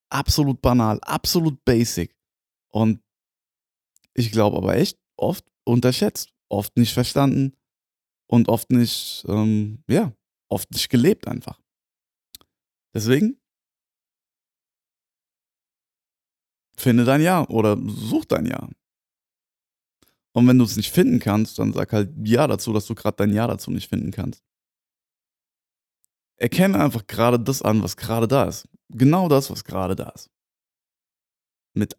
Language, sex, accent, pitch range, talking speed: German, male, German, 105-125 Hz, 130 wpm